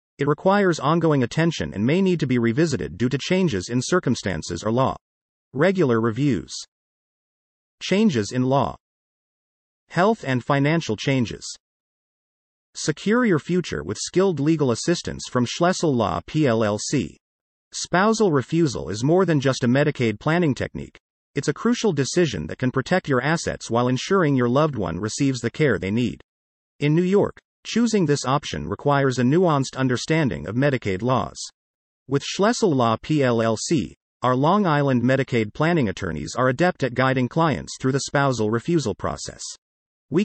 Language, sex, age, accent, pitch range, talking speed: English, male, 40-59, American, 115-165 Hz, 150 wpm